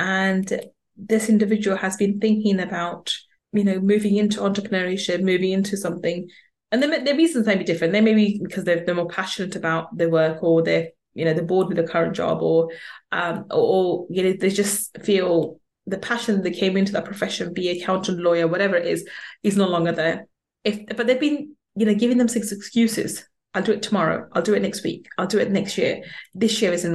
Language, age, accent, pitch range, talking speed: English, 20-39, British, 180-215 Hz, 215 wpm